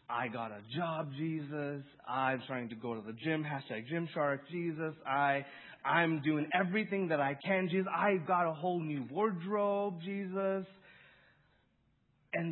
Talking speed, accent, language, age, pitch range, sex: 155 wpm, American, English, 30-49, 110-155 Hz, male